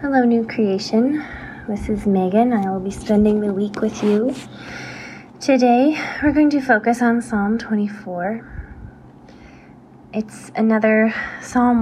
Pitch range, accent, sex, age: 190-220 Hz, American, female, 30-49